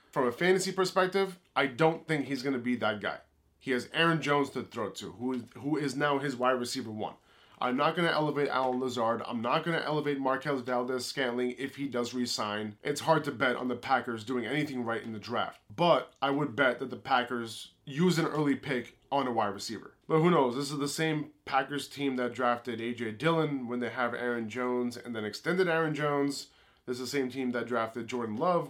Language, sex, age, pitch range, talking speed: English, male, 20-39, 120-145 Hz, 220 wpm